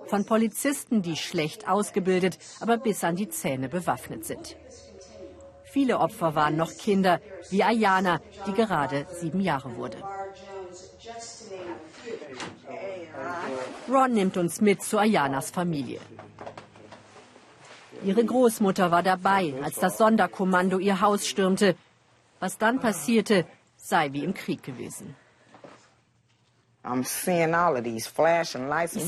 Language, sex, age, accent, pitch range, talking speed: German, female, 50-69, German, 165-210 Hz, 105 wpm